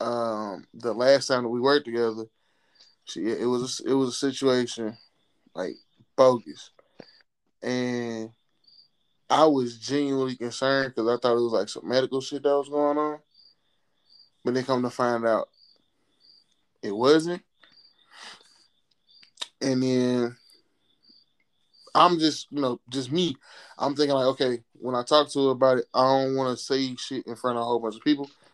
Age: 10-29